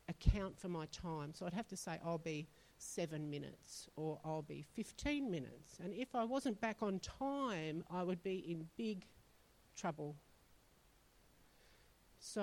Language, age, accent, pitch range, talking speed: English, 50-69, Australian, 155-185 Hz, 155 wpm